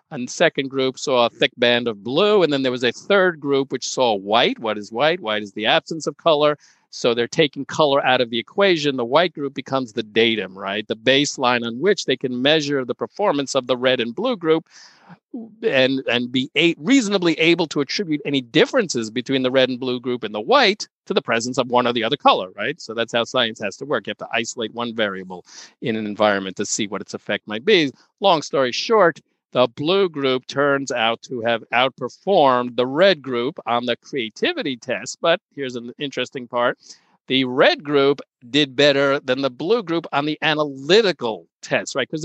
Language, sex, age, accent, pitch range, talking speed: English, male, 50-69, American, 120-155 Hz, 210 wpm